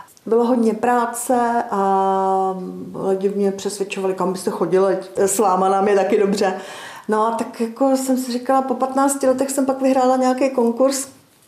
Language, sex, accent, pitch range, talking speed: Czech, female, native, 180-205 Hz, 155 wpm